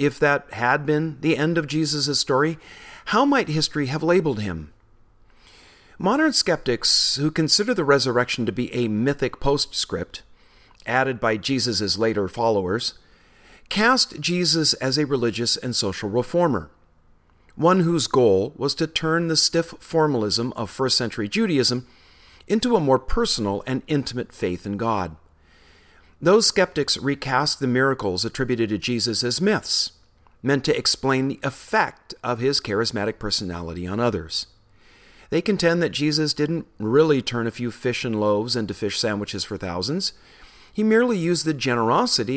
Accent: American